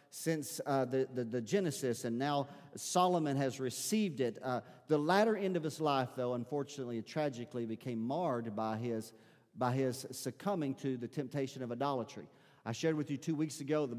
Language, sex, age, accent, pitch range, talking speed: English, male, 40-59, American, 135-175 Hz, 185 wpm